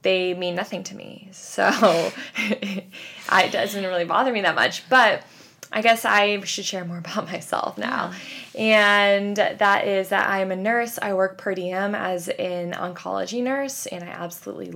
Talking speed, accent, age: 170 wpm, American, 10-29